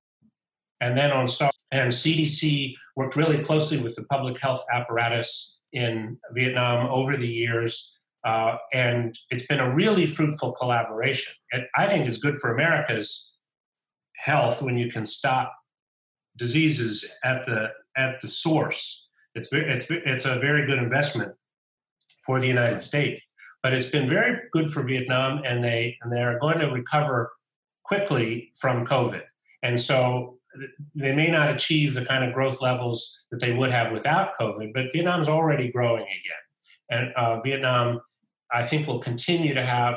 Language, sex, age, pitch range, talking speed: English, male, 40-59, 120-150 Hz, 160 wpm